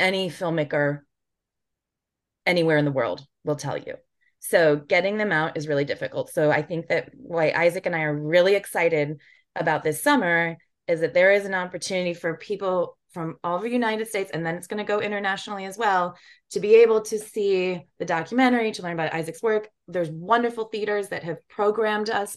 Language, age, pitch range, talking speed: English, 20-39, 160-205 Hz, 195 wpm